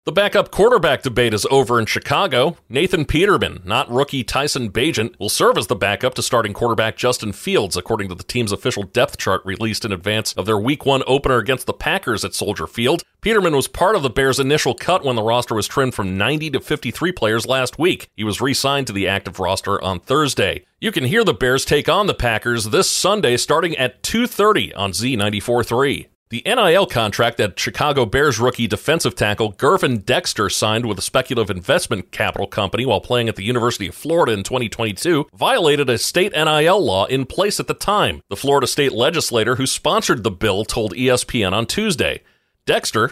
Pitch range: 110-135 Hz